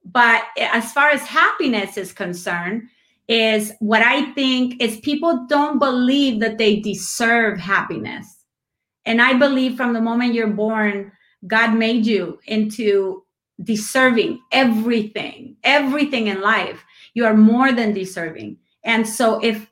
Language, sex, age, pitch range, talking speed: English, female, 30-49, 220-280 Hz, 135 wpm